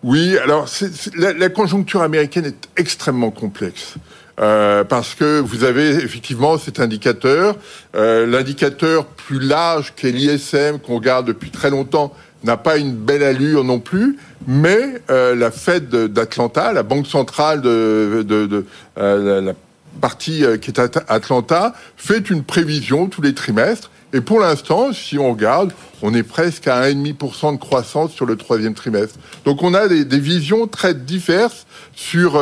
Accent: French